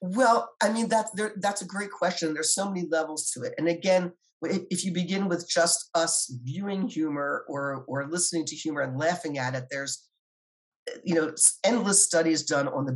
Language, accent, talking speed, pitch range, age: English, American, 190 wpm, 145-180 Hz, 50-69